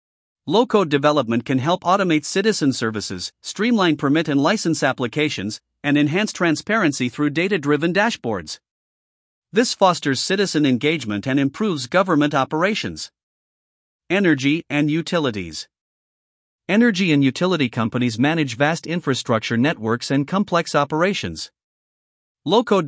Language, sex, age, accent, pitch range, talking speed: English, male, 50-69, American, 130-175 Hz, 110 wpm